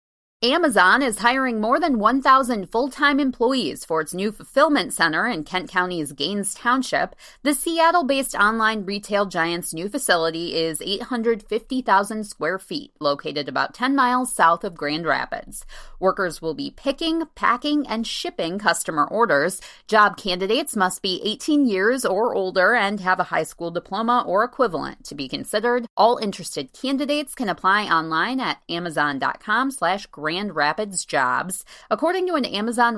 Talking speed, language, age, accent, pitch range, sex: 145 wpm, English, 30-49, American, 180-265 Hz, female